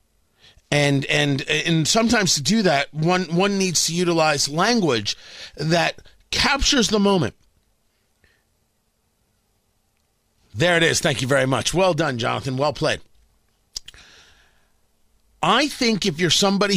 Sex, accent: male, American